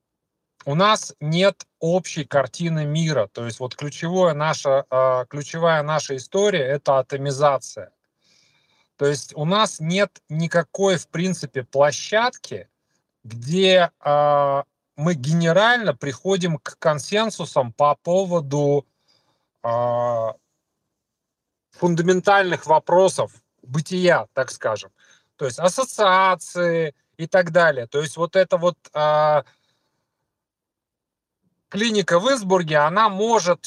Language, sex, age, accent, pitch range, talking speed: Russian, male, 30-49, native, 145-190 Hz, 100 wpm